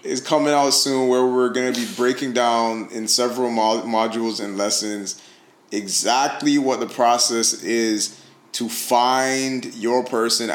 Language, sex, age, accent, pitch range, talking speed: English, male, 20-39, American, 110-120 Hz, 140 wpm